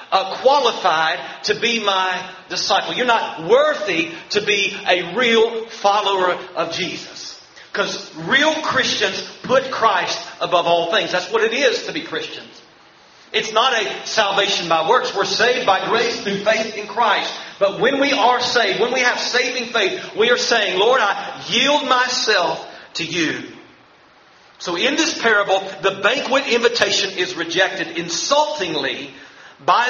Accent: American